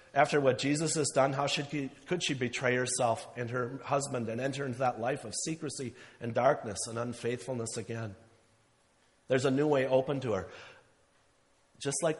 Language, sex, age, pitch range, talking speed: English, male, 40-59, 115-140 Hz, 175 wpm